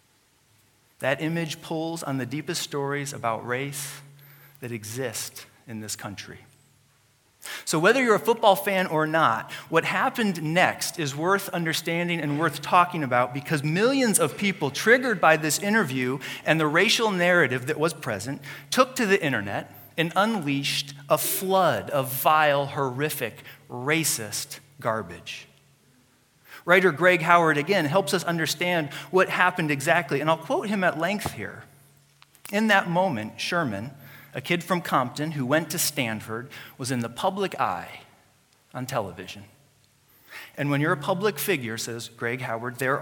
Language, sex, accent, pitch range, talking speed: English, male, American, 130-175 Hz, 150 wpm